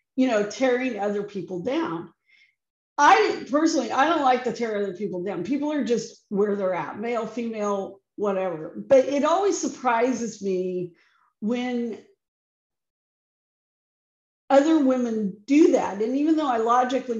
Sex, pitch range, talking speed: female, 210-305 Hz, 140 wpm